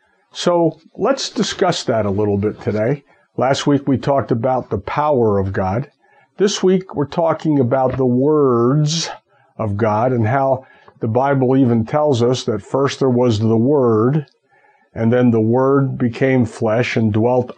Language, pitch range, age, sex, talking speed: English, 115-145 Hz, 50-69, male, 160 wpm